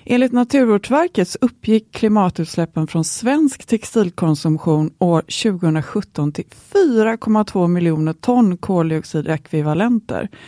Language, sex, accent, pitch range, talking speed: Swedish, female, native, 165-235 Hz, 80 wpm